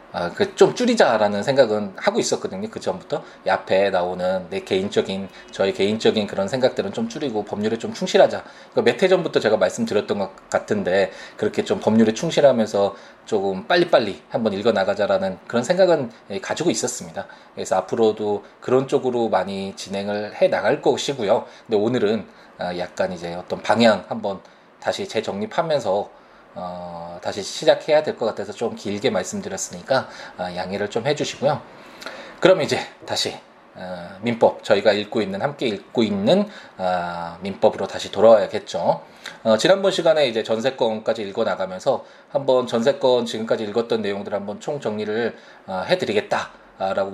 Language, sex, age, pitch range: Korean, male, 20-39, 100-160 Hz